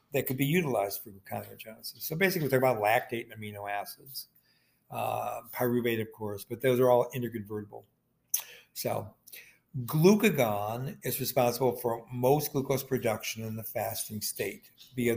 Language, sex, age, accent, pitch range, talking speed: English, male, 60-79, American, 115-140 Hz, 145 wpm